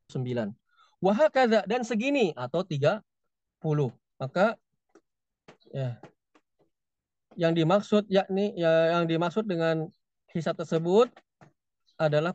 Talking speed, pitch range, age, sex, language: 85 wpm, 150-200 Hz, 20-39, male, Indonesian